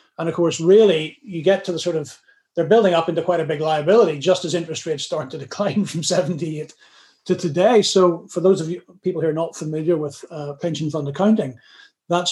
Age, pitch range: 40-59, 155-200 Hz